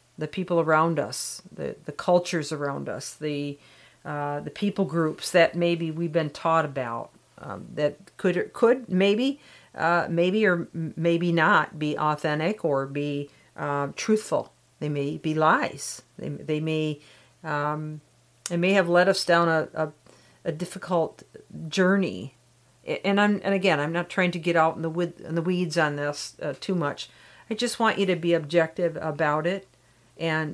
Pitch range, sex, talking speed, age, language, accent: 155-185 Hz, female, 165 wpm, 50-69, English, American